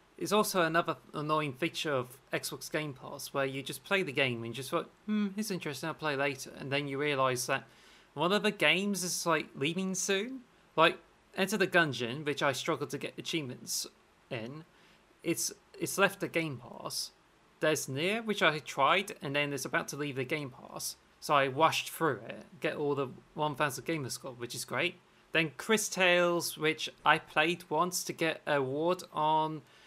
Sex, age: male, 30-49